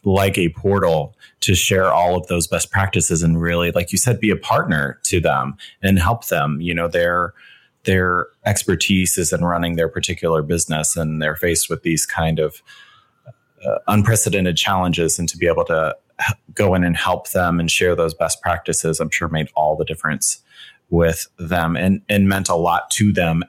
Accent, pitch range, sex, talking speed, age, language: American, 85-105 Hz, male, 190 wpm, 30-49, English